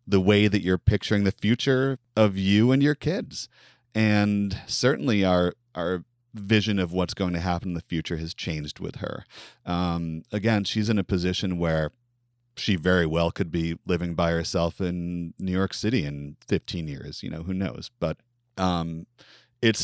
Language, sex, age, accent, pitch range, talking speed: English, male, 30-49, American, 85-115 Hz, 175 wpm